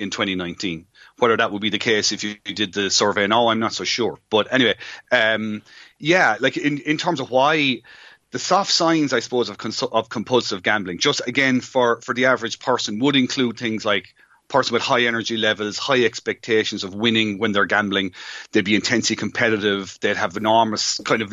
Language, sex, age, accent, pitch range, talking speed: English, male, 30-49, Irish, 105-125 Hz, 195 wpm